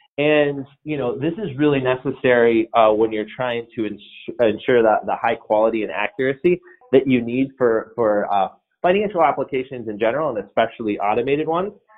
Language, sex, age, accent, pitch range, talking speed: English, male, 30-49, American, 115-160 Hz, 165 wpm